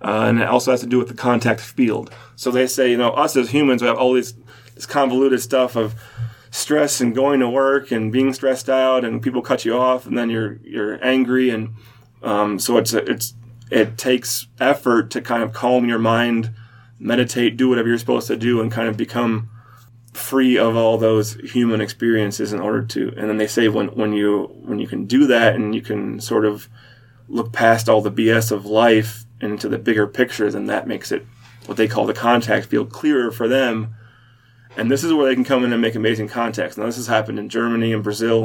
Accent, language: American, English